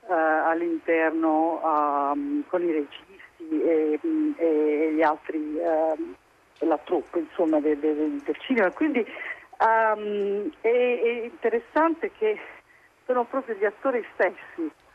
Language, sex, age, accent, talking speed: Italian, female, 50-69, native, 110 wpm